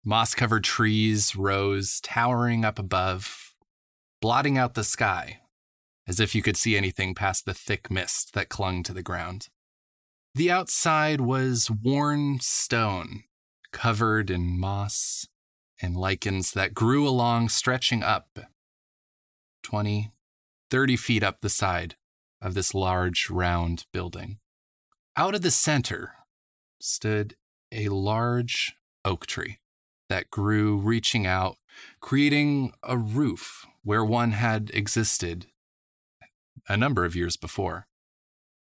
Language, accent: English, American